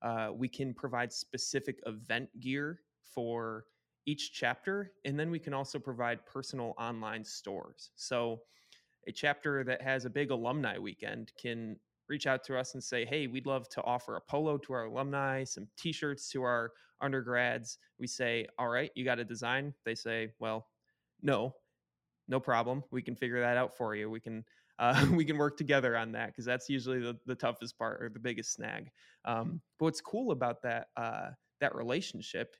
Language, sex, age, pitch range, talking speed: English, male, 20-39, 115-140 Hz, 185 wpm